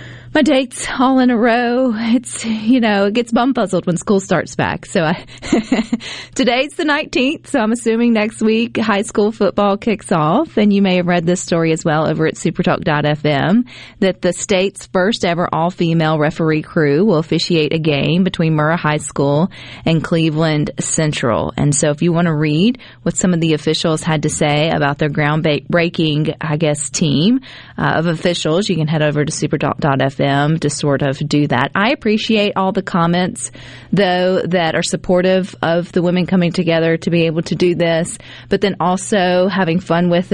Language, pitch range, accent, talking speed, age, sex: English, 155-200 Hz, American, 185 wpm, 30-49, female